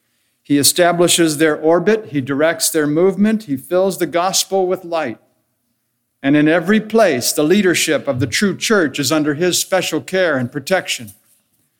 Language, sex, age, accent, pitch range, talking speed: English, male, 60-79, American, 125-185 Hz, 160 wpm